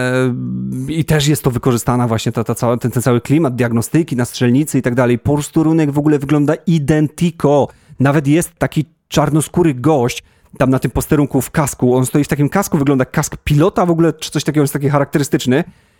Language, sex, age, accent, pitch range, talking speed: Polish, male, 30-49, native, 125-155 Hz, 190 wpm